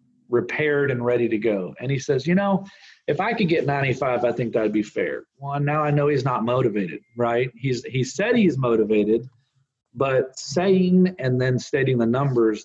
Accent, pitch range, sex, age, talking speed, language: American, 120-150 Hz, male, 40-59, 190 wpm, English